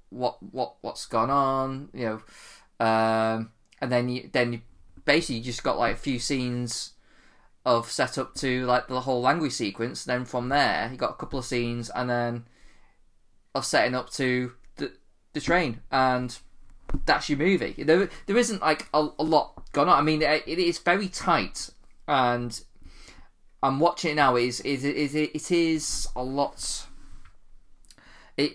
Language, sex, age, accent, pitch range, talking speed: English, male, 20-39, British, 115-140 Hz, 175 wpm